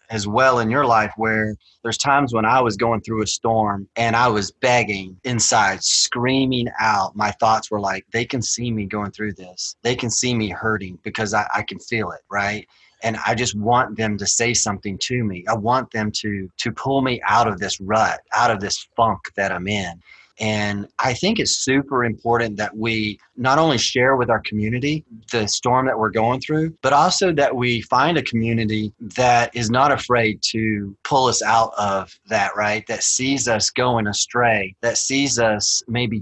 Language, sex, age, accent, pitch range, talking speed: English, male, 30-49, American, 105-125 Hz, 200 wpm